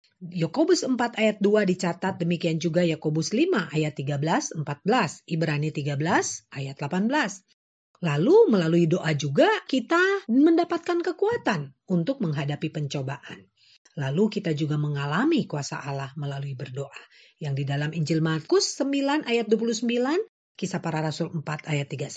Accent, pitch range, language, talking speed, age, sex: native, 155-245 Hz, Indonesian, 125 wpm, 40-59, female